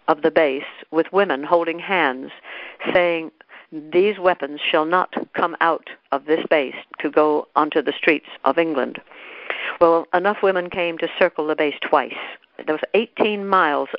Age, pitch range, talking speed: 60-79, 160-205 Hz, 160 wpm